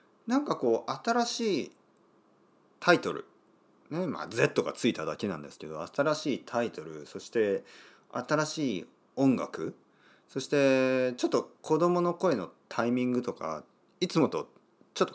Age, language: 40-59, Japanese